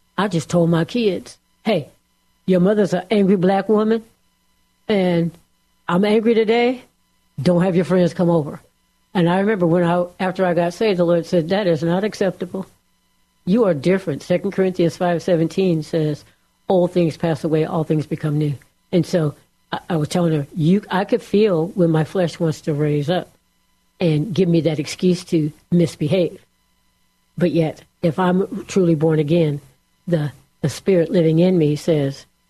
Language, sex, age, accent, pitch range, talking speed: English, female, 60-79, American, 150-180 Hz, 170 wpm